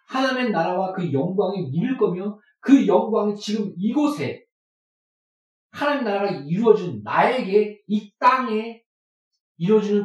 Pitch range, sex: 160-215 Hz, male